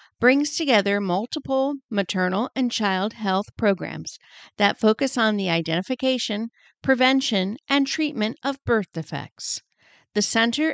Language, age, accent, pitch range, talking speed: English, 50-69, American, 190-250 Hz, 115 wpm